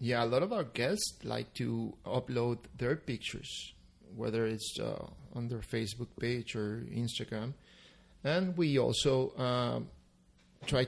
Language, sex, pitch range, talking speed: English, male, 115-140 Hz, 140 wpm